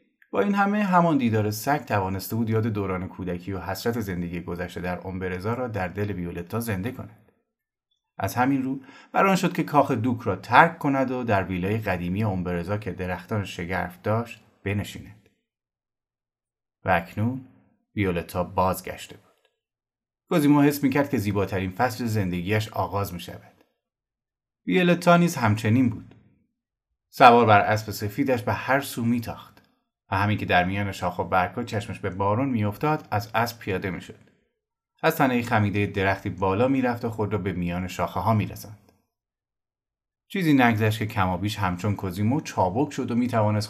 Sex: male